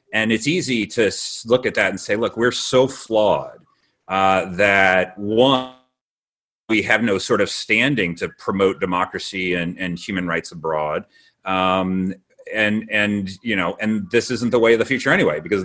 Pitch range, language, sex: 95-120 Hz, English, male